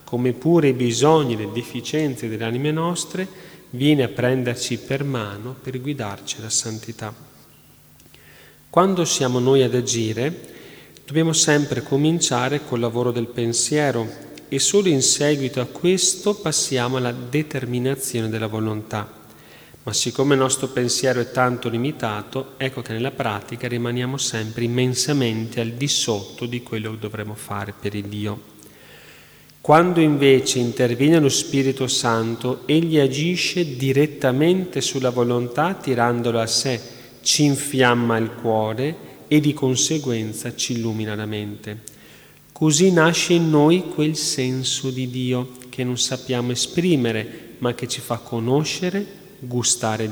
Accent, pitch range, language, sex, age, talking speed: native, 115-145 Hz, Italian, male, 40-59, 135 wpm